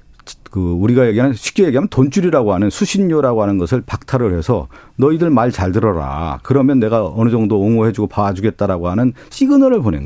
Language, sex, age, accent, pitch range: Korean, male, 40-59, native, 95-140 Hz